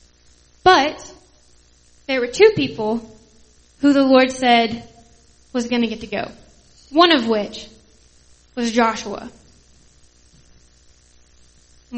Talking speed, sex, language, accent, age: 105 wpm, female, English, American, 10-29